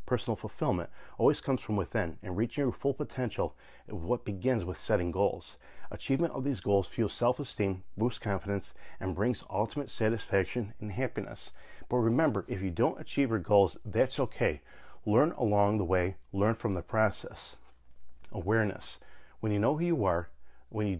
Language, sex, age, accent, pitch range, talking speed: English, male, 40-59, American, 95-125 Hz, 165 wpm